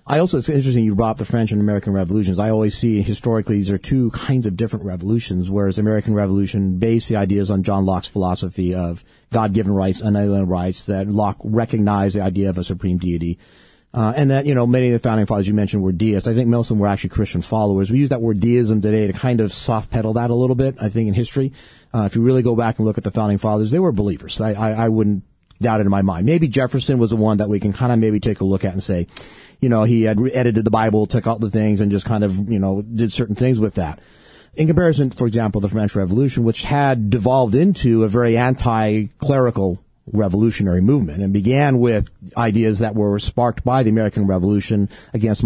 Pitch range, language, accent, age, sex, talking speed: 100-120 Hz, English, American, 40-59, male, 235 wpm